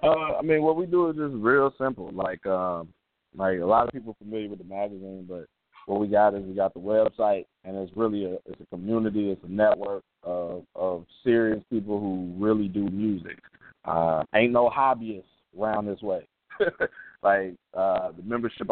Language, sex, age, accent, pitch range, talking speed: English, male, 20-39, American, 95-110 Hz, 190 wpm